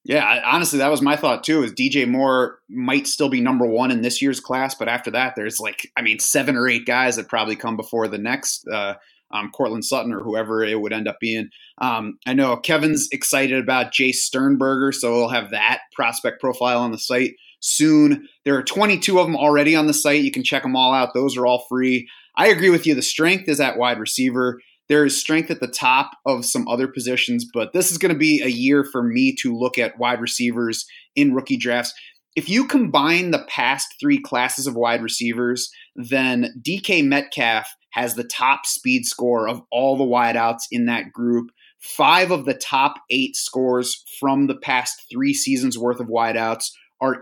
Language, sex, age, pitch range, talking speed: English, male, 30-49, 120-150 Hz, 205 wpm